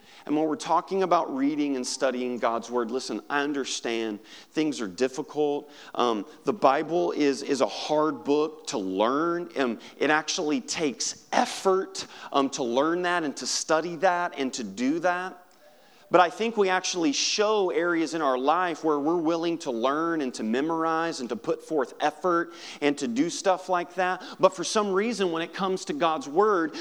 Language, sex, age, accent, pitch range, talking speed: English, male, 40-59, American, 150-205 Hz, 185 wpm